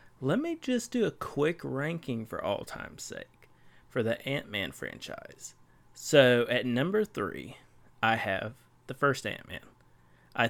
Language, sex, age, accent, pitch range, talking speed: English, male, 30-49, American, 115-140 Hz, 145 wpm